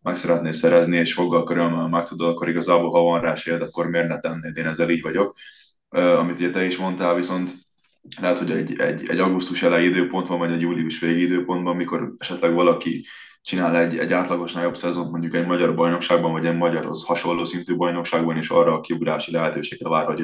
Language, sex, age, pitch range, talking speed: Hungarian, male, 20-39, 85-90 Hz, 205 wpm